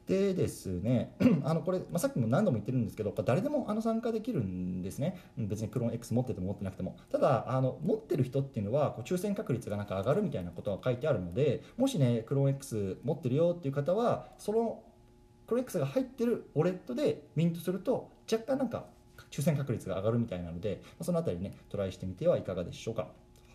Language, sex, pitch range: Japanese, male, 110-155 Hz